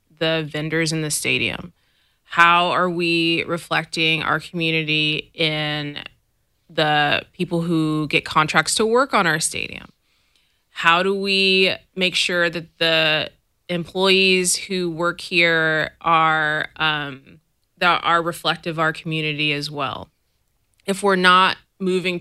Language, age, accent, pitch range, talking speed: English, 20-39, American, 155-180 Hz, 125 wpm